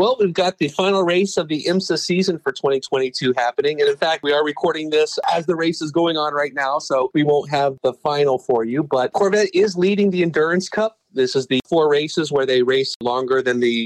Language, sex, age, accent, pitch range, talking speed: English, male, 40-59, American, 130-170 Hz, 235 wpm